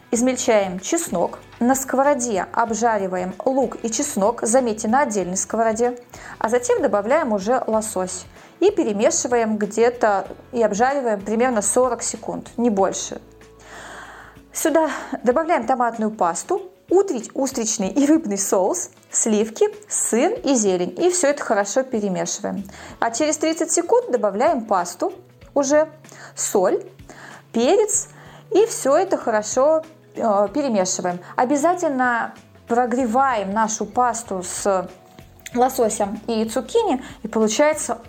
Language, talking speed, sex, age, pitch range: Russian, 110 wpm, female, 20-39, 210-270 Hz